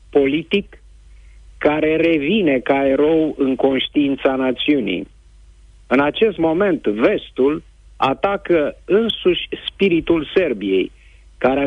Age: 50-69